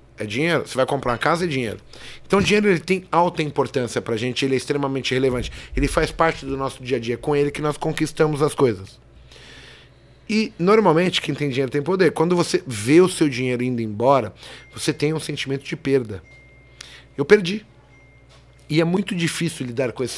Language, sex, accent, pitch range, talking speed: Portuguese, male, Brazilian, 130-170 Hz, 200 wpm